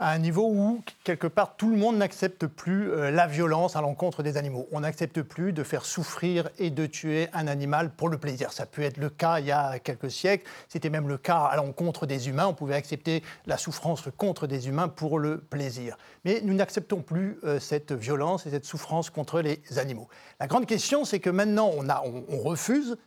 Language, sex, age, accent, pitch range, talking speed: French, male, 30-49, French, 145-190 Hz, 215 wpm